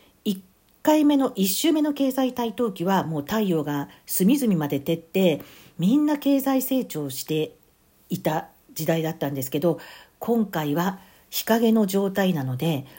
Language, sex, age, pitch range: Japanese, female, 50-69, 160-230 Hz